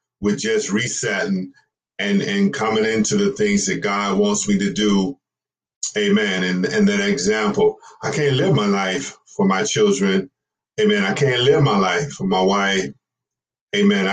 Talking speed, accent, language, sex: 160 wpm, American, English, male